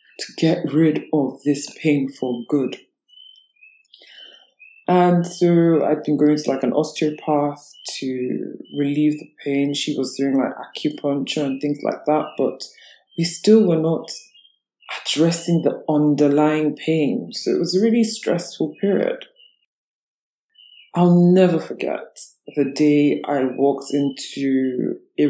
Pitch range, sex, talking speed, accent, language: 135-180 Hz, female, 130 wpm, British, English